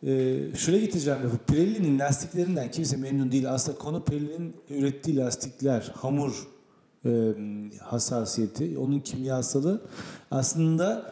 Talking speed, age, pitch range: 110 wpm, 40-59, 125-160 Hz